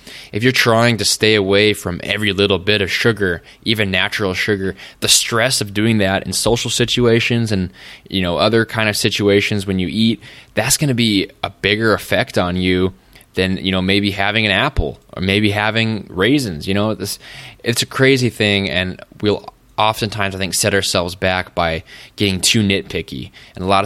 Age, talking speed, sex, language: 20-39, 190 wpm, male, English